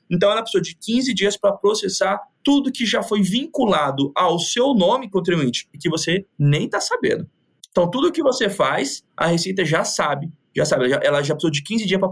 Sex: male